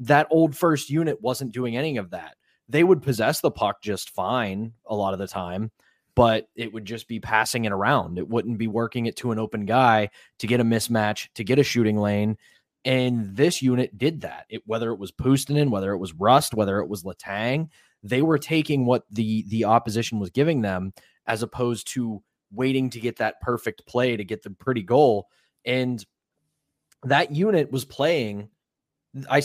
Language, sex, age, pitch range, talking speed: English, male, 20-39, 110-135 Hz, 195 wpm